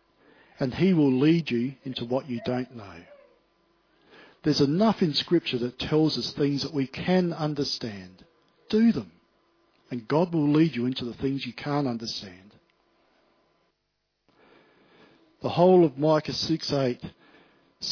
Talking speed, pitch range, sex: 135 wpm, 120-150 Hz, male